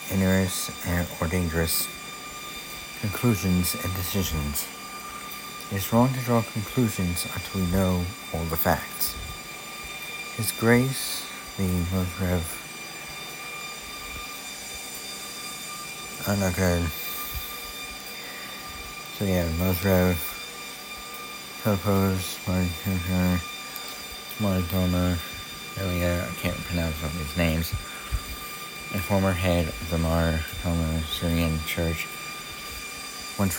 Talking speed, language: 80 wpm, English